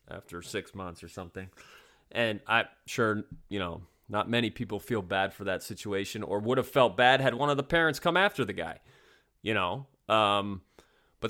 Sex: male